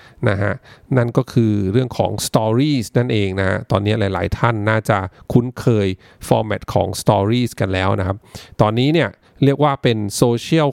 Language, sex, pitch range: English, male, 105-130 Hz